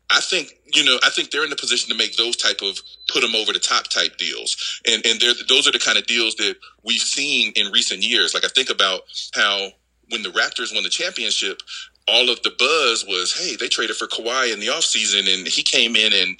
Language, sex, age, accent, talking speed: English, male, 30-49, American, 245 wpm